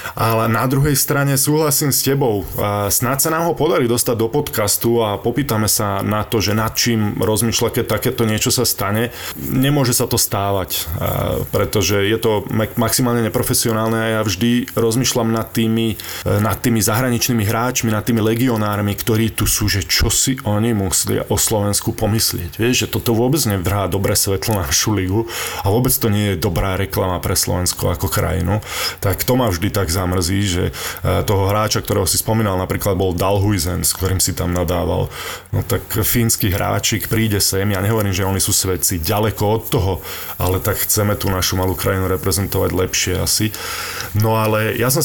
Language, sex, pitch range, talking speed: Slovak, male, 100-115 Hz, 175 wpm